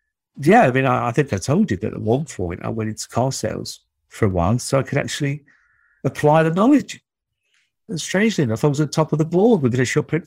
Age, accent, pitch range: 50-69, British, 100-155 Hz